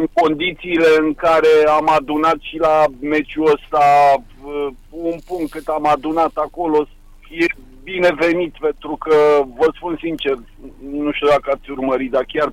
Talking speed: 145 wpm